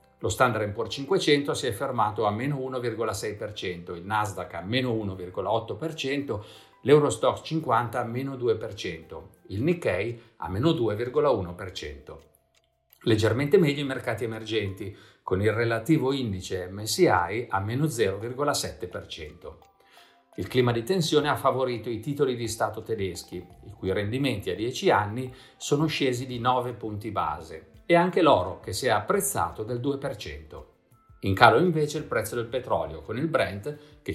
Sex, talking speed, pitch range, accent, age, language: male, 140 wpm, 105-135 Hz, native, 50-69, Italian